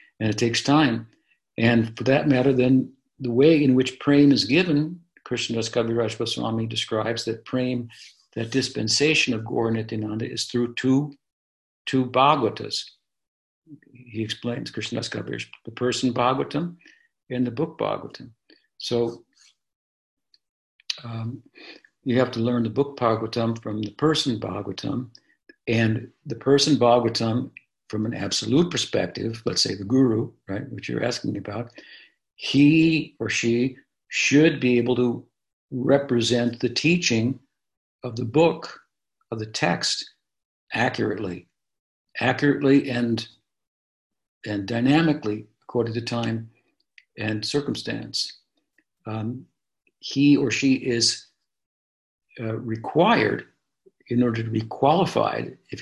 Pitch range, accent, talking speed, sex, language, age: 115-135 Hz, American, 120 wpm, male, English, 60-79